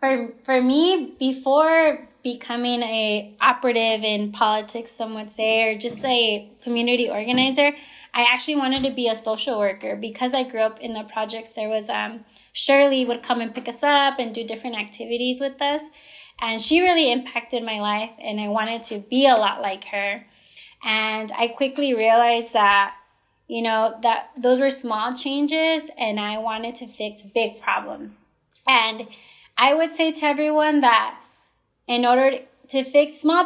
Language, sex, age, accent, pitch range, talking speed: English, female, 20-39, American, 220-270 Hz, 170 wpm